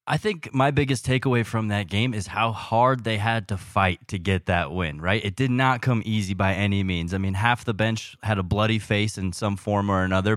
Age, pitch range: 20-39, 100-125 Hz